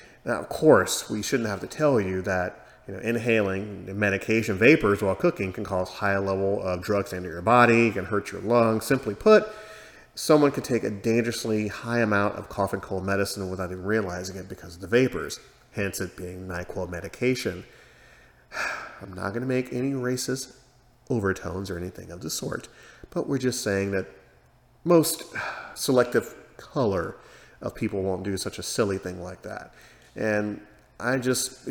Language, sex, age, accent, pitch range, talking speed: English, male, 30-49, American, 95-120 Hz, 170 wpm